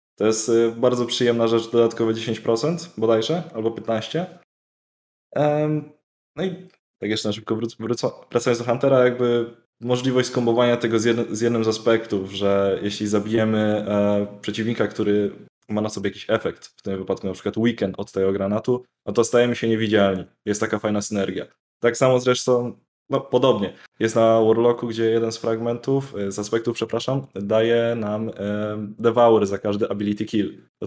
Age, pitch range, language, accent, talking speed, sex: 20-39, 105-115 Hz, Polish, native, 150 wpm, male